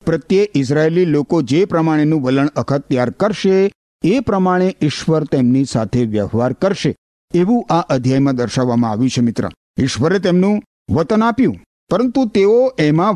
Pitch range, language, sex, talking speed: 125-190 Hz, Gujarati, male, 120 wpm